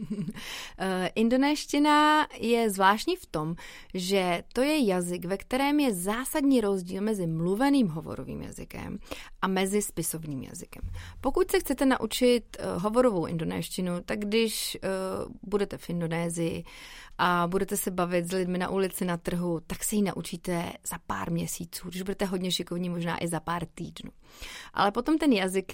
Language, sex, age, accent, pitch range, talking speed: Czech, female, 30-49, native, 180-215 Hz, 150 wpm